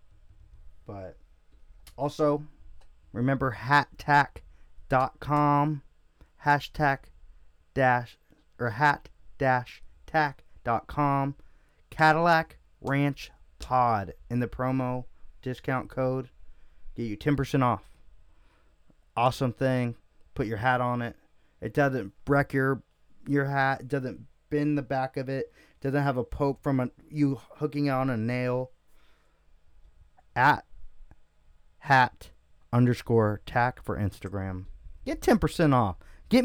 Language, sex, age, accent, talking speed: English, male, 30-49, American, 105 wpm